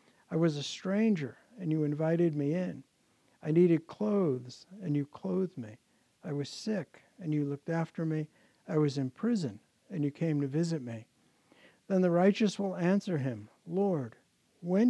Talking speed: 170 wpm